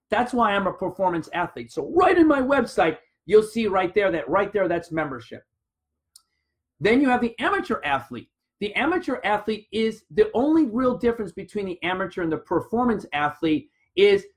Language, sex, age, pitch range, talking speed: English, male, 30-49, 180-235 Hz, 175 wpm